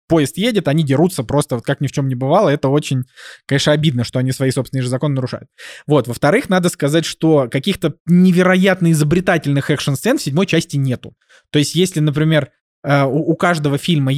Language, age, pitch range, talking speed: Russian, 20-39, 130-170 Hz, 180 wpm